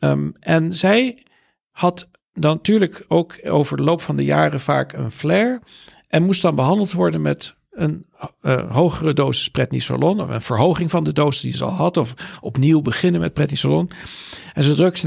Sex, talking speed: male, 180 wpm